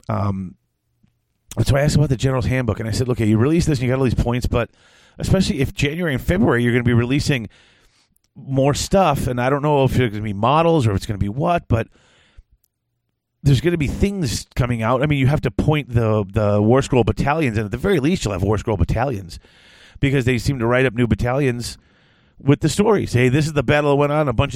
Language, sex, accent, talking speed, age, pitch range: English, male, American, 245 wpm, 40-59, 110-140 Hz